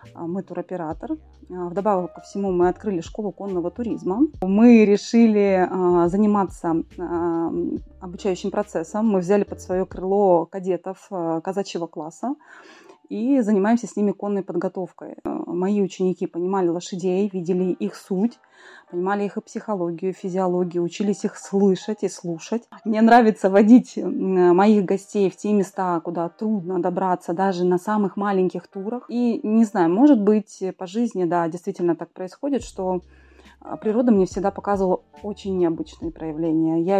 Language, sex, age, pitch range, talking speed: Russian, female, 20-39, 180-210 Hz, 135 wpm